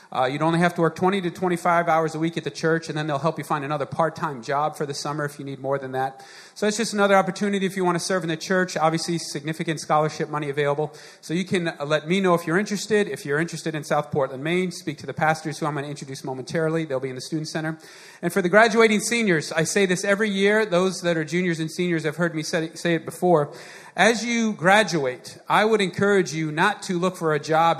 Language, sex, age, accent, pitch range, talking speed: English, male, 40-59, American, 140-175 Hz, 255 wpm